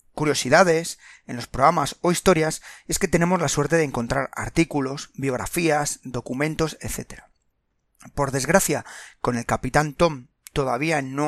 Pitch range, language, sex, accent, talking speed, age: 135-165 Hz, Spanish, male, Spanish, 135 wpm, 30-49